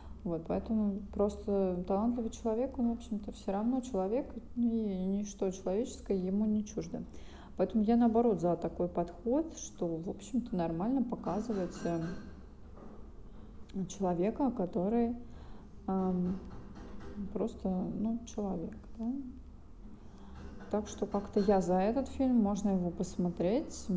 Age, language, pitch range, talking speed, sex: 20-39, Russian, 175-220 Hz, 115 wpm, female